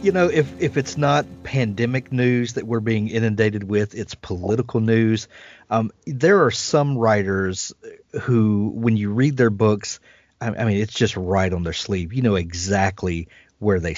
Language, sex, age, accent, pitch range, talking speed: English, male, 40-59, American, 100-120 Hz, 175 wpm